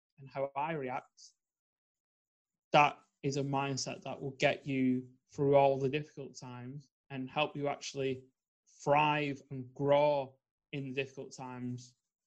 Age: 20-39